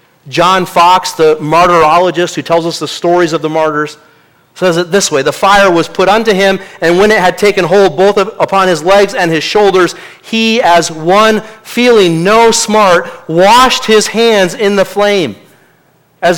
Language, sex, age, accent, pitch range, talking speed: English, male, 40-59, American, 155-200 Hz, 175 wpm